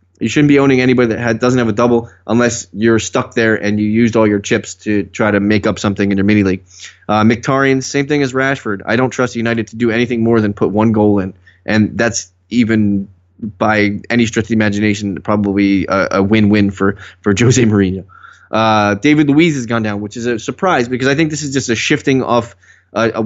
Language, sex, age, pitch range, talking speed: English, male, 20-39, 105-120 Hz, 220 wpm